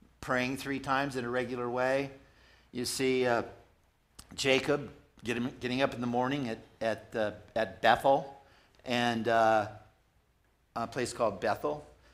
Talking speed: 140 wpm